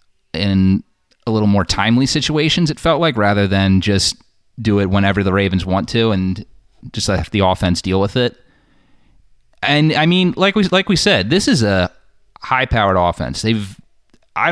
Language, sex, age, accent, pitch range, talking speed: English, male, 30-49, American, 95-115 Hz, 180 wpm